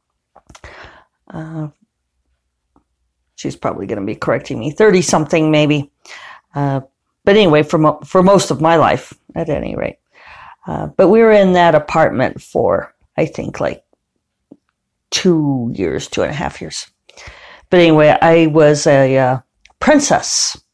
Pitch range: 145-195 Hz